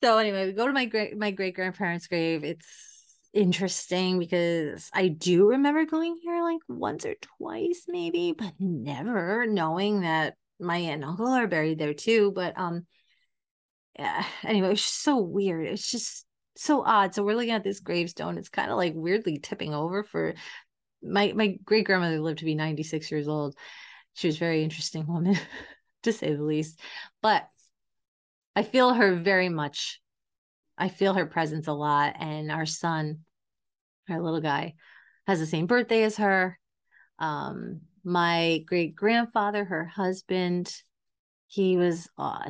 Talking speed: 160 wpm